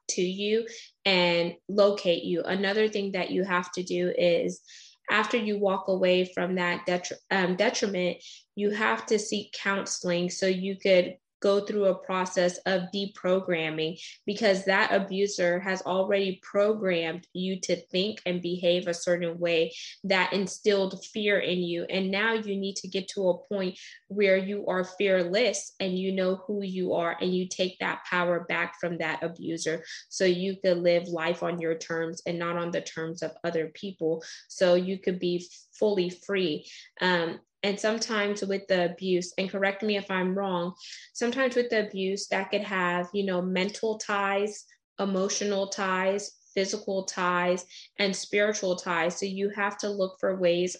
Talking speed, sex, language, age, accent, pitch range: 165 wpm, female, English, 20-39, American, 175-200 Hz